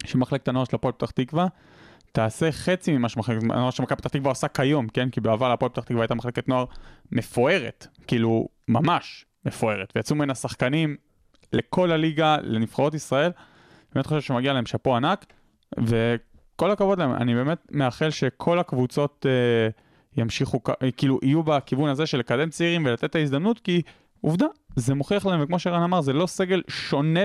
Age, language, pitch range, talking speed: 20-39, Hebrew, 120-160 Hz, 160 wpm